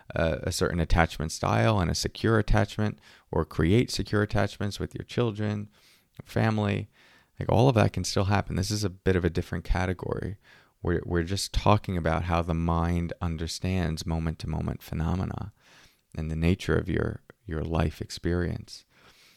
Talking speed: 155 wpm